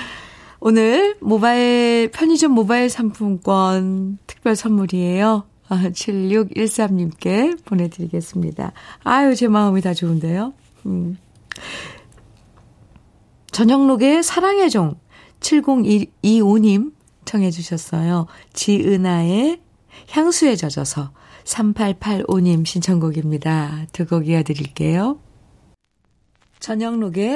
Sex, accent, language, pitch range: female, native, Korean, 160-230 Hz